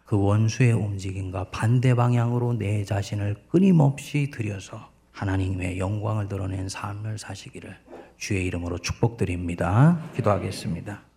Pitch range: 95-110 Hz